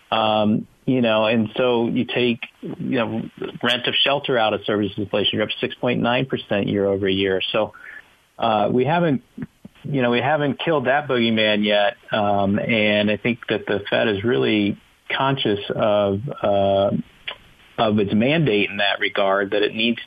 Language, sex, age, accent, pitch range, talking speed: English, male, 40-59, American, 100-120 Hz, 175 wpm